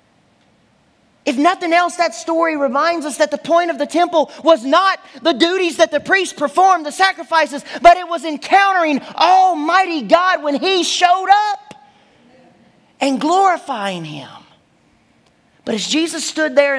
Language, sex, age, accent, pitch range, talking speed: English, male, 40-59, American, 235-340 Hz, 145 wpm